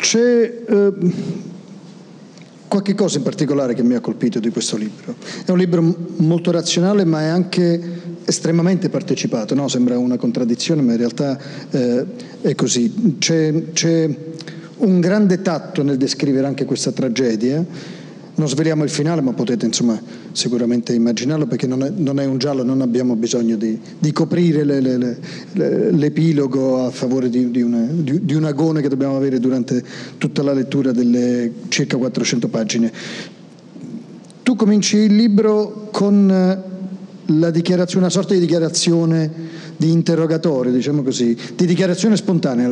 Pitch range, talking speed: 130-175 Hz, 145 wpm